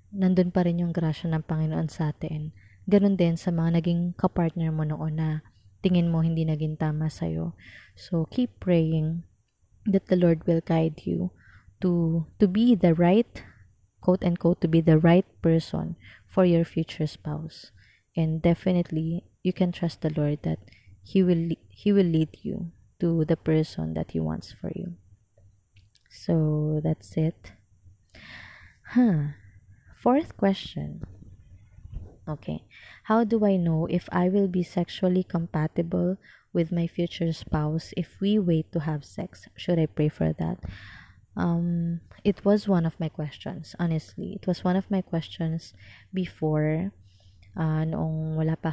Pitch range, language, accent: 110-180 Hz, Filipino, native